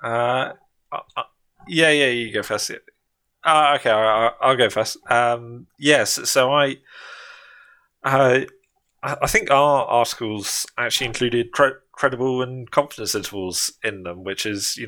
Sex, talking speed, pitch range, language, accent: male, 155 wpm, 95-120 Hz, English, British